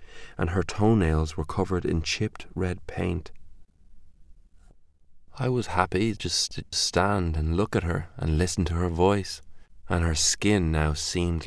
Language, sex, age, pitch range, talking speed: English, male, 30-49, 75-95 Hz, 150 wpm